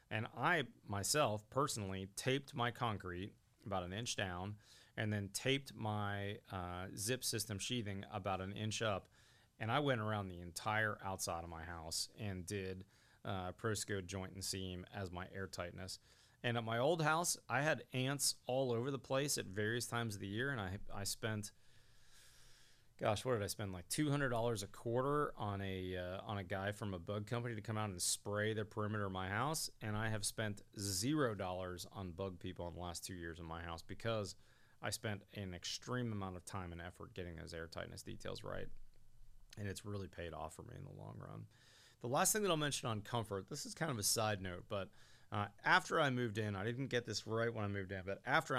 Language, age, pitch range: English, 30-49, 95-120 Hz